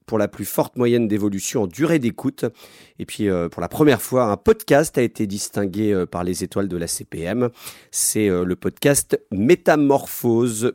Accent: French